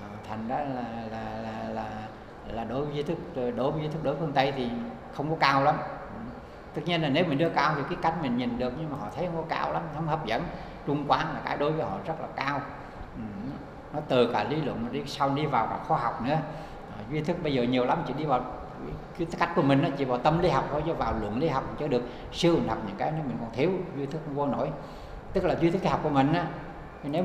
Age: 60-79